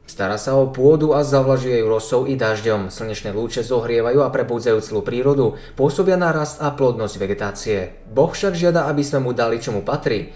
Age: 20-39